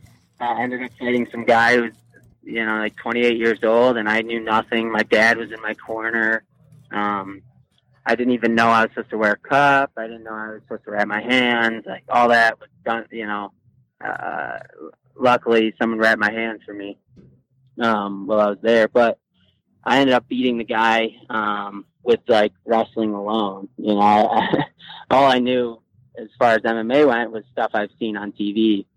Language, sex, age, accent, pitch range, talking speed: English, male, 20-39, American, 105-125 Hz, 195 wpm